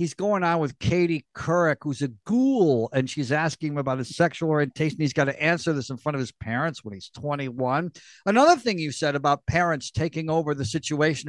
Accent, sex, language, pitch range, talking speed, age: American, male, English, 120-155 Hz, 215 wpm, 60-79